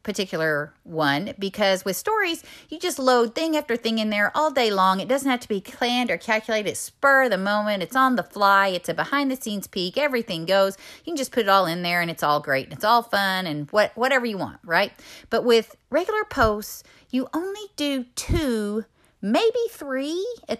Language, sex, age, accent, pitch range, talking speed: English, female, 30-49, American, 180-255 Hz, 215 wpm